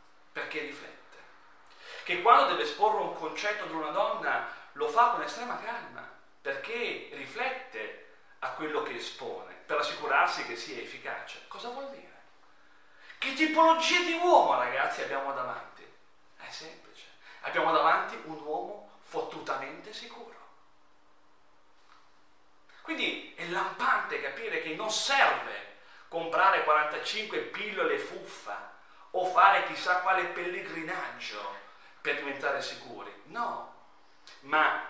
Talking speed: 115 wpm